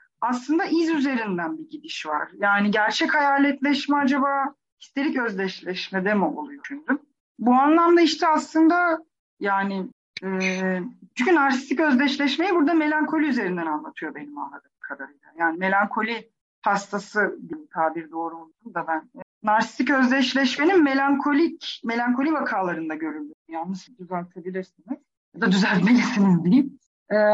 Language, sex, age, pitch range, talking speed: Turkish, female, 40-59, 200-305 Hz, 110 wpm